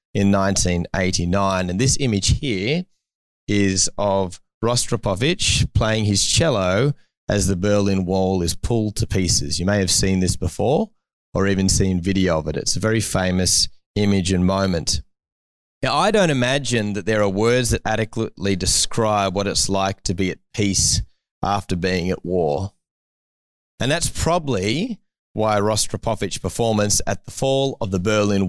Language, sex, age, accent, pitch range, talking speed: English, male, 30-49, Australian, 95-125 Hz, 155 wpm